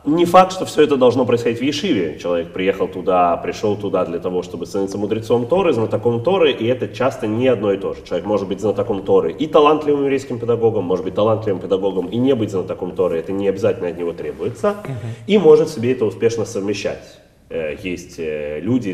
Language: Russian